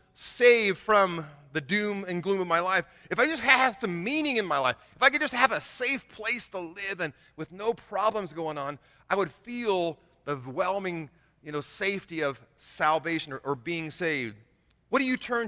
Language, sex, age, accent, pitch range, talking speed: English, male, 30-49, American, 145-195 Hz, 200 wpm